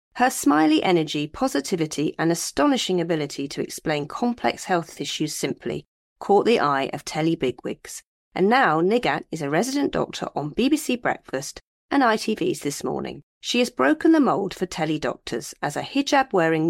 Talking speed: 160 wpm